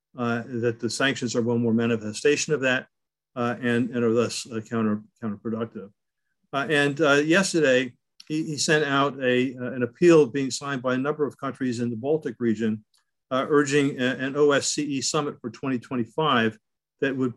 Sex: male